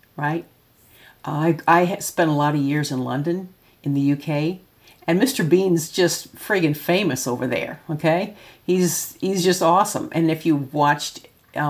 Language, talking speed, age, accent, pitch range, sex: English, 165 wpm, 50-69, American, 150-190 Hz, female